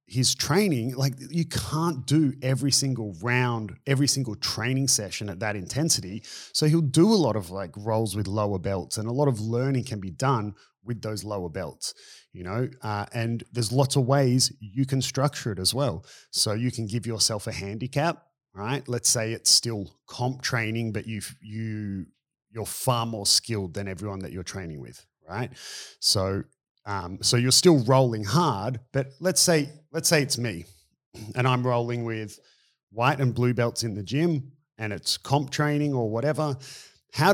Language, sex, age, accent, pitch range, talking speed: English, male, 30-49, Australian, 100-130 Hz, 180 wpm